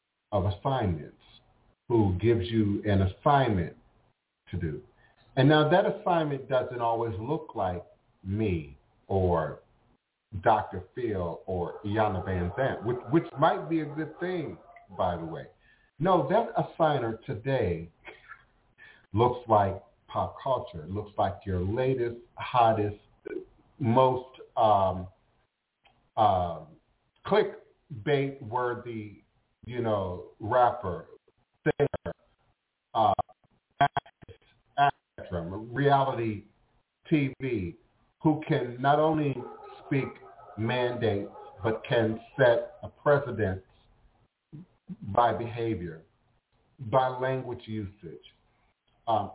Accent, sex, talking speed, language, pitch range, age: American, male, 95 wpm, English, 105-135 Hz, 50-69